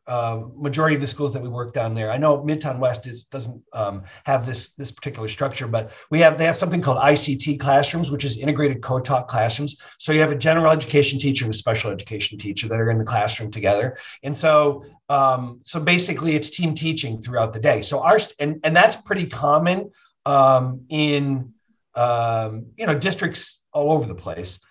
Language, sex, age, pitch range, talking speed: English, male, 40-59, 125-165 Hz, 200 wpm